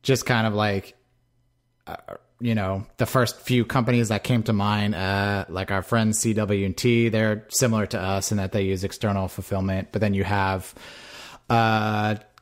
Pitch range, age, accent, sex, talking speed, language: 95-115 Hz, 30-49, American, male, 170 wpm, English